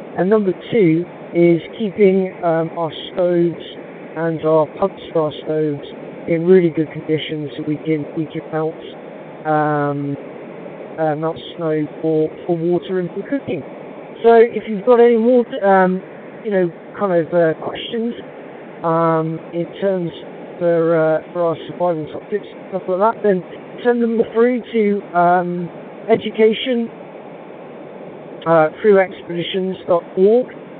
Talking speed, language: 135 wpm, English